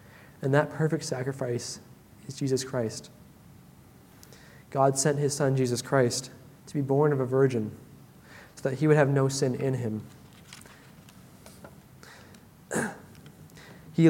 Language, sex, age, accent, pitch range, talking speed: English, male, 20-39, American, 130-150 Hz, 125 wpm